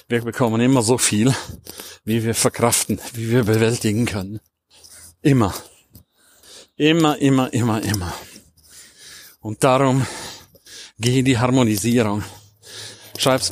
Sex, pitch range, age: male, 105-130 Hz, 50-69